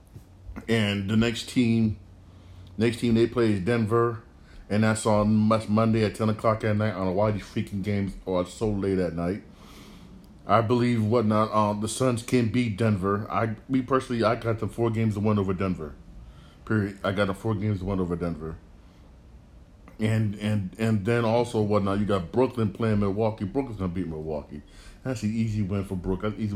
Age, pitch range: 30-49, 95-115 Hz